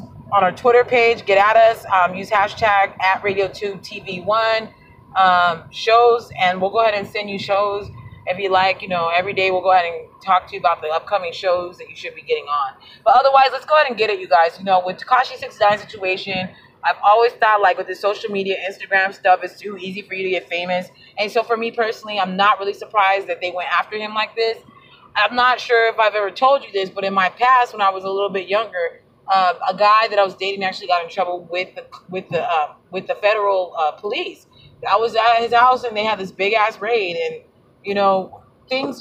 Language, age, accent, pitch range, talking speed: English, 20-39, American, 185-225 Hz, 240 wpm